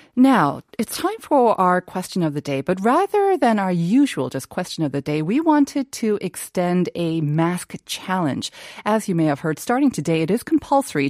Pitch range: 155-220 Hz